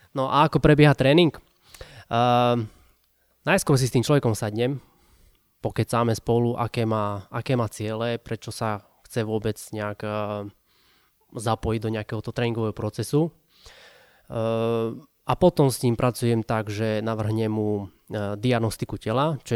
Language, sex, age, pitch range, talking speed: Slovak, male, 20-39, 110-120 Hz, 135 wpm